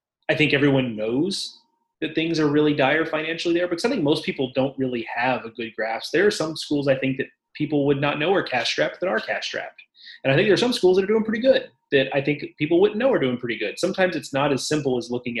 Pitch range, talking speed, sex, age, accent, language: 125-170 Hz, 260 wpm, male, 30-49, American, English